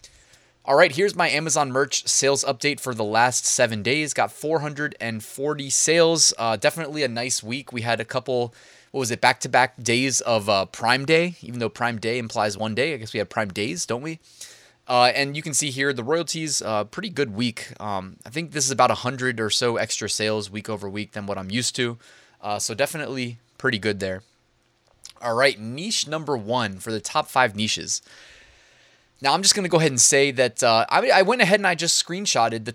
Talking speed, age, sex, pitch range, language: 215 wpm, 20-39, male, 115-155 Hz, English